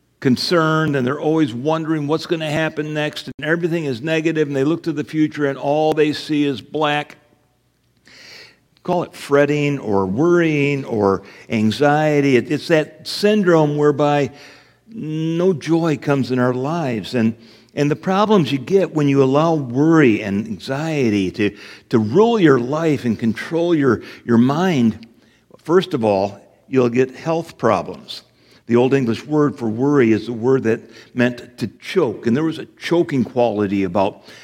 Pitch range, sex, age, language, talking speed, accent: 120-155 Hz, male, 60-79, English, 160 wpm, American